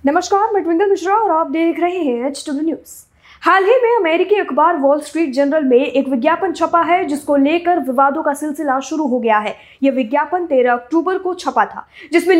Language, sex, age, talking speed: Hindi, female, 20-39, 205 wpm